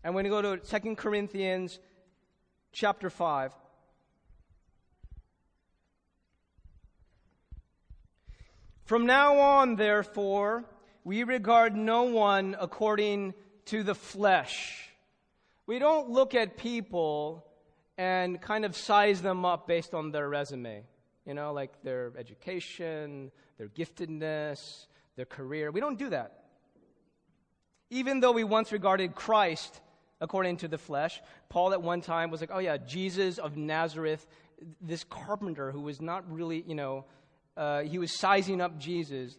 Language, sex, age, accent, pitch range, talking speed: English, male, 30-49, American, 150-210 Hz, 130 wpm